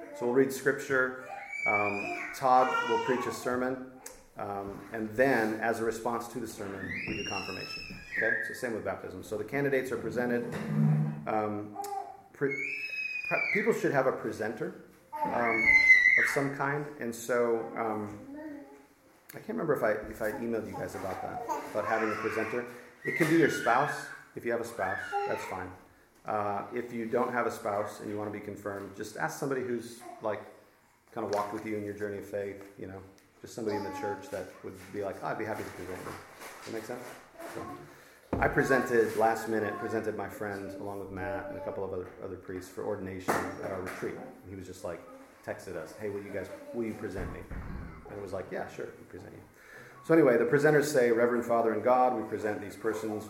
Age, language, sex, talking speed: 30-49, English, male, 210 wpm